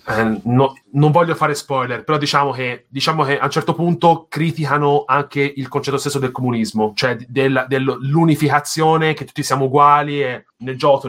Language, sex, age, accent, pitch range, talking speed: Italian, male, 30-49, native, 120-145 Hz, 160 wpm